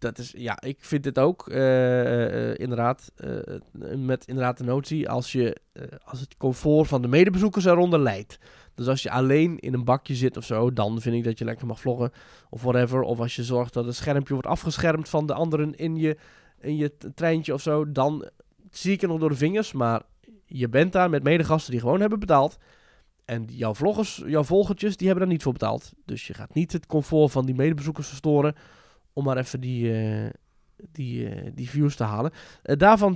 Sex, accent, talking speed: male, Dutch, 205 wpm